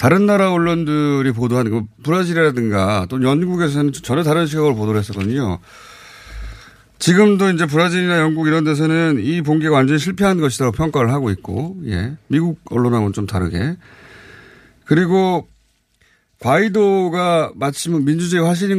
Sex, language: male, Korean